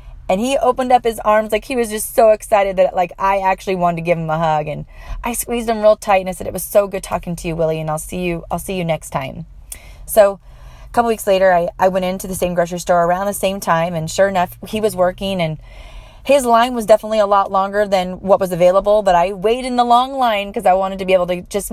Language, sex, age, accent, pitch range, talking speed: English, female, 30-49, American, 185-255 Hz, 270 wpm